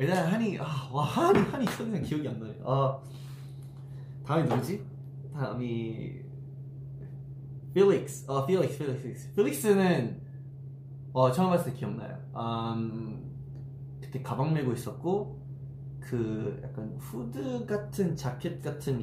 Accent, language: native, Korean